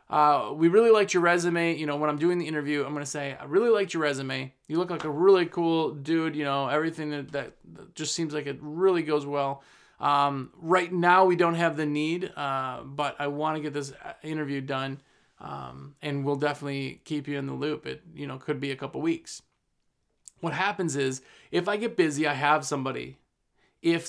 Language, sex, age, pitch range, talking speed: English, male, 30-49, 145-185 Hz, 215 wpm